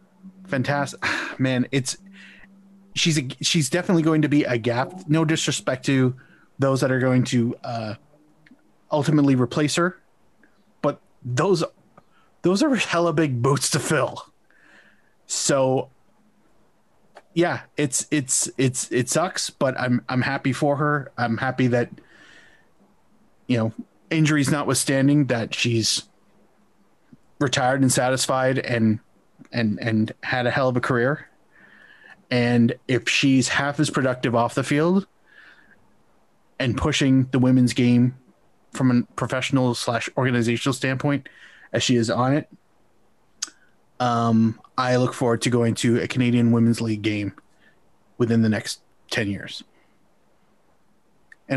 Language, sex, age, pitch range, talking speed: English, male, 30-49, 120-145 Hz, 125 wpm